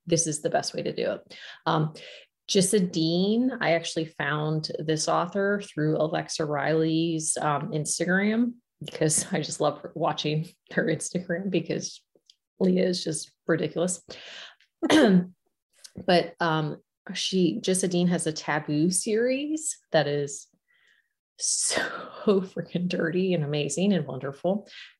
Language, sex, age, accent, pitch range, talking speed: English, female, 30-49, American, 160-190 Hz, 120 wpm